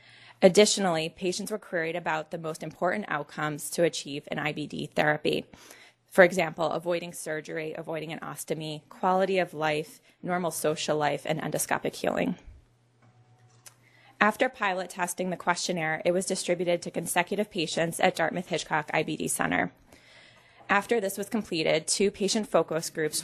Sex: female